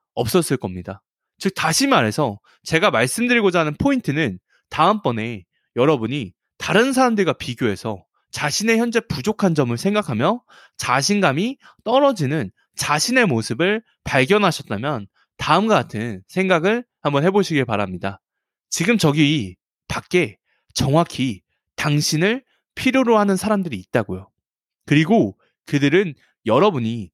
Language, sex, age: Korean, male, 20-39